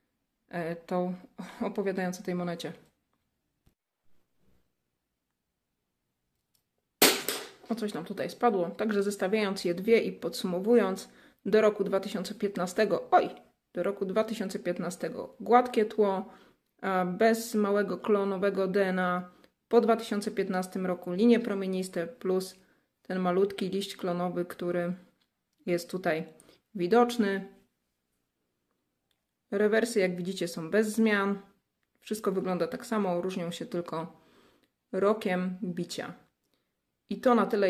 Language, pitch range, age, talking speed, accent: Polish, 175-210 Hz, 30-49, 95 wpm, native